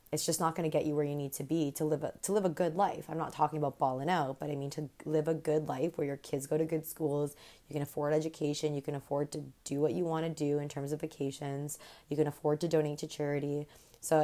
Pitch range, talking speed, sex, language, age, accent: 150-170 Hz, 275 wpm, female, English, 20-39, American